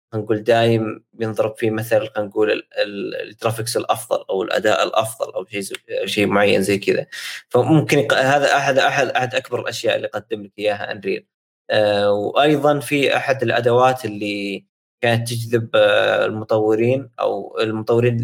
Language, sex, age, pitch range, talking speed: Arabic, male, 20-39, 105-130 Hz, 130 wpm